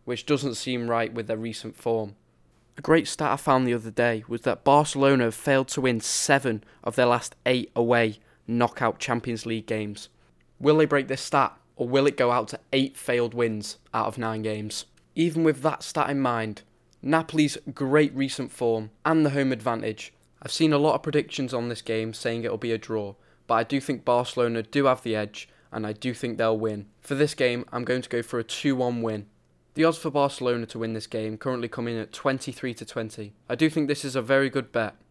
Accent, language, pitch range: British, English, 115-140 Hz